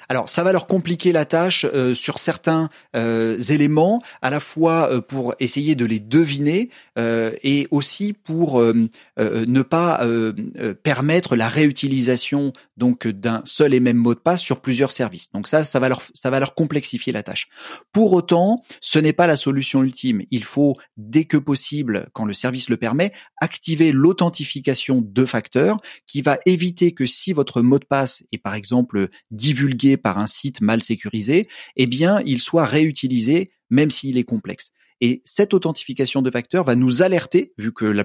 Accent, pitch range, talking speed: French, 115-160 Hz, 185 wpm